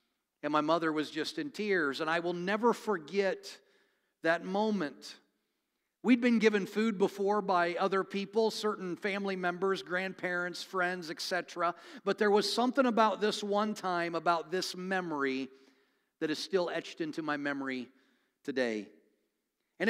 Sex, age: male, 50-69